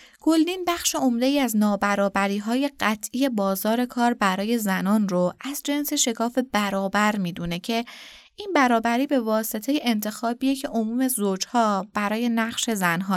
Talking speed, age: 130 wpm, 20-39